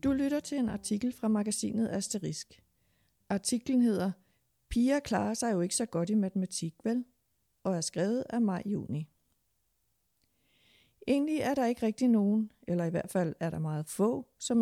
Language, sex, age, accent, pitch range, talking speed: Danish, female, 60-79, native, 185-235 Hz, 165 wpm